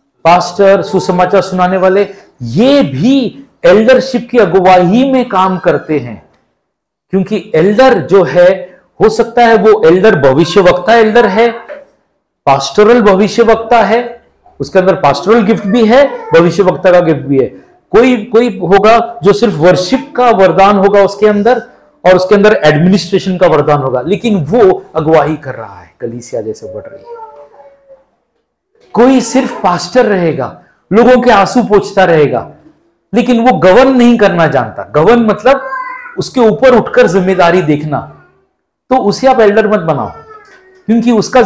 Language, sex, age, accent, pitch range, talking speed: Hindi, male, 50-69, native, 180-240 Hz, 140 wpm